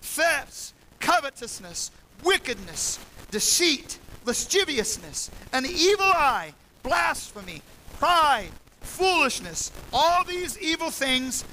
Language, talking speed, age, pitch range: English, 80 wpm, 50-69, 280-345 Hz